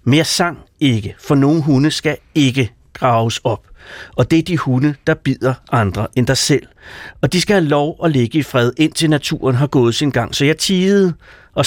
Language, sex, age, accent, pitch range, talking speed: Danish, male, 60-79, native, 120-160 Hz, 205 wpm